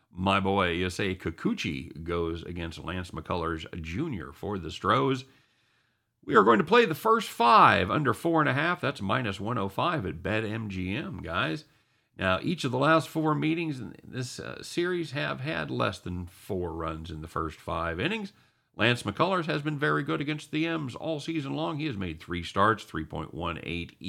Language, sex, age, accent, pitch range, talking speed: English, male, 50-69, American, 95-150 Hz, 170 wpm